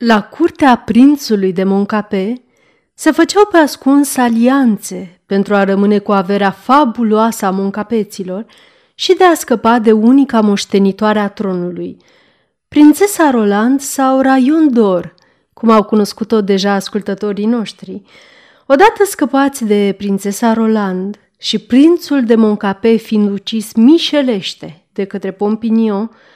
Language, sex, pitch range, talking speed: Romanian, female, 200-265 Hz, 120 wpm